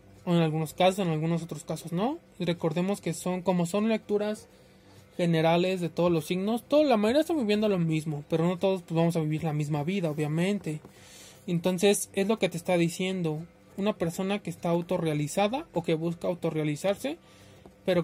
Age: 20-39